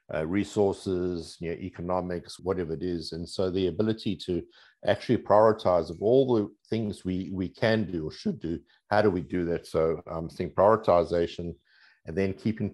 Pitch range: 85-105 Hz